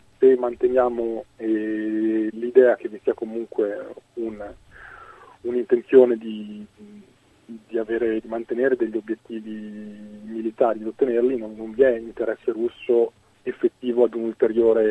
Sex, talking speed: male, 115 wpm